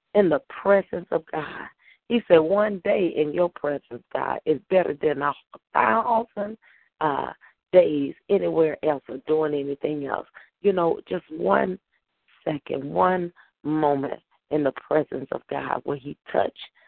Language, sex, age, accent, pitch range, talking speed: English, female, 40-59, American, 140-175 Hz, 145 wpm